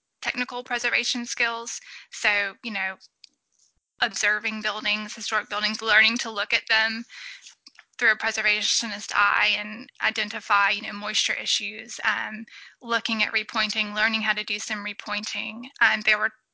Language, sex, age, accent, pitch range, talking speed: English, female, 10-29, American, 205-235 Hz, 140 wpm